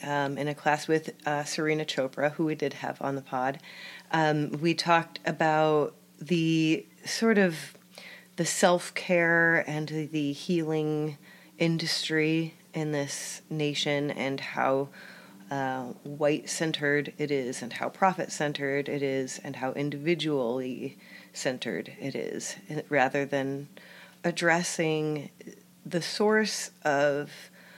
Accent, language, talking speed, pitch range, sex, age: American, English, 115 wpm, 140-170 Hz, female, 30-49